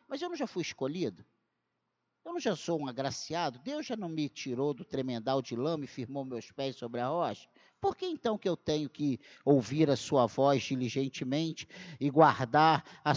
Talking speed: 195 wpm